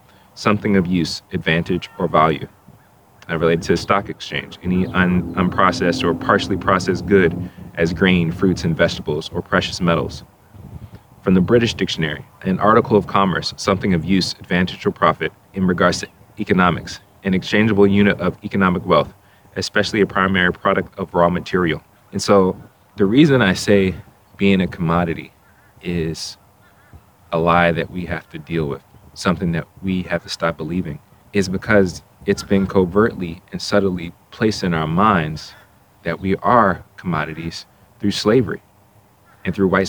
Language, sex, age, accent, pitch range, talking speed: English, male, 30-49, American, 90-100 Hz, 155 wpm